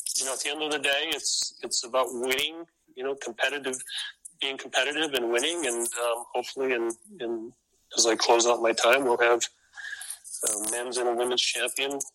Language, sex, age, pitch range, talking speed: English, male, 40-59, 115-140 Hz, 190 wpm